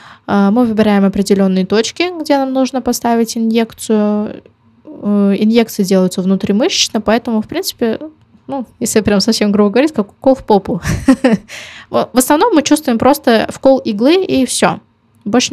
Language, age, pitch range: Russian, 20-39, 200-250 Hz